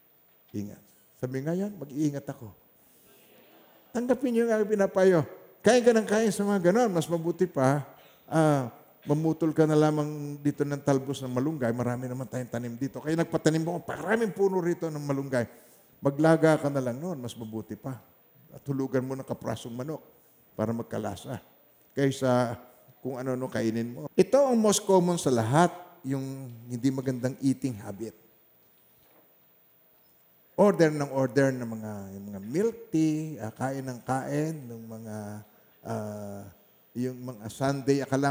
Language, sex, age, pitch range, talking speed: Filipino, male, 50-69, 120-160 Hz, 145 wpm